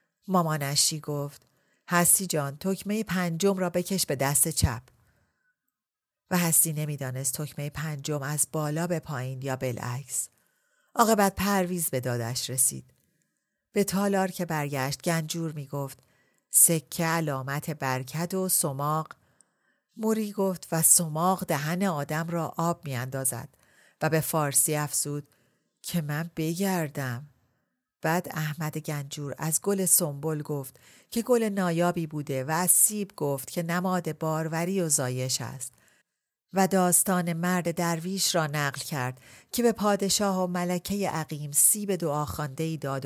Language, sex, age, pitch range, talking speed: Persian, female, 40-59, 140-180 Hz, 130 wpm